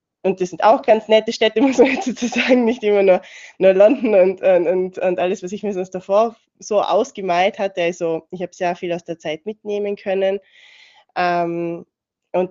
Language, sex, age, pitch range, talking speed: German, female, 20-39, 175-225 Hz, 185 wpm